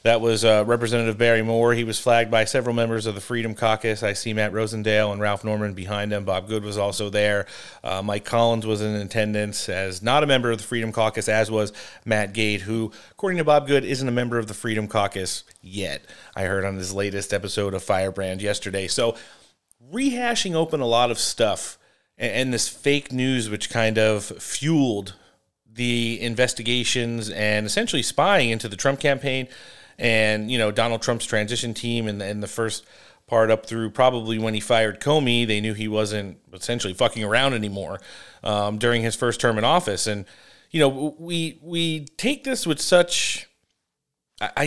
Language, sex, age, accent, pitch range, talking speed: English, male, 30-49, American, 105-125 Hz, 190 wpm